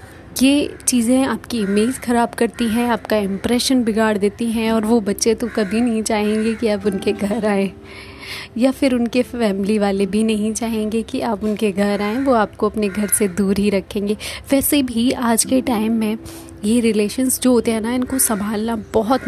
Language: Hindi